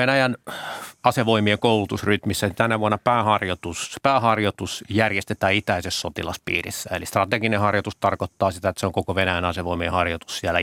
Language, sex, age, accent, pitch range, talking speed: Finnish, male, 30-49, native, 95-115 Hz, 135 wpm